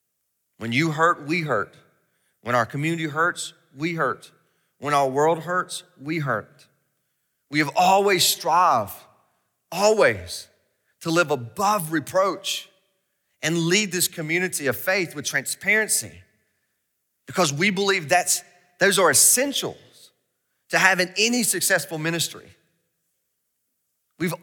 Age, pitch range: 30-49, 135-195 Hz